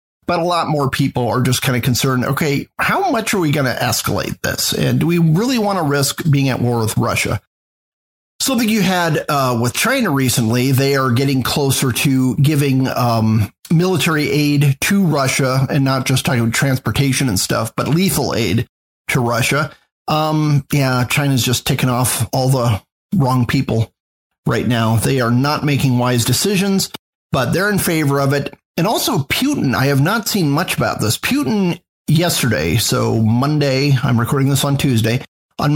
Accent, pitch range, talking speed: American, 120-150 Hz, 180 wpm